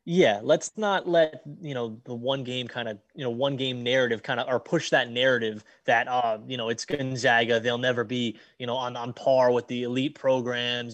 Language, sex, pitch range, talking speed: English, male, 125-155 Hz, 220 wpm